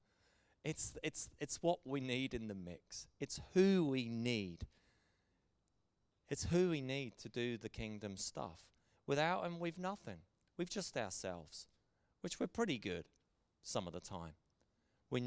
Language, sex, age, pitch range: English, male, 30-49, 105-165 Hz